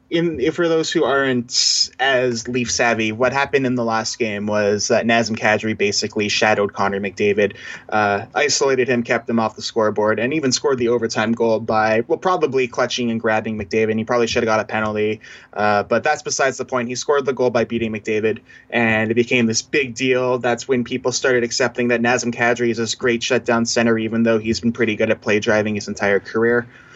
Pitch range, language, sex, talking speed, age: 110-130 Hz, English, male, 210 wpm, 20-39